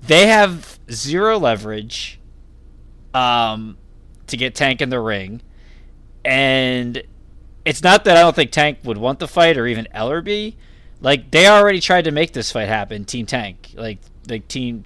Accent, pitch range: American, 105-140 Hz